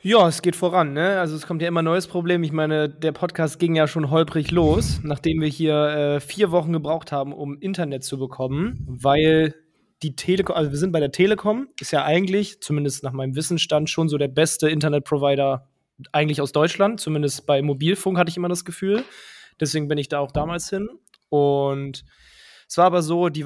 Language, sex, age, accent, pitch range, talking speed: German, male, 20-39, German, 145-180 Hz, 200 wpm